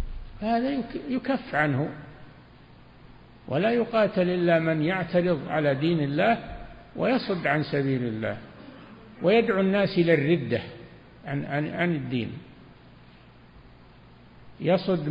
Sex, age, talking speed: male, 60-79, 85 wpm